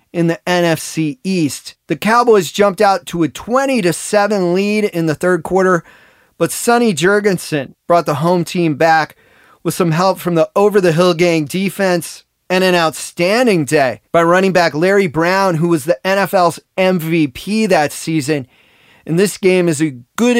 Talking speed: 160 wpm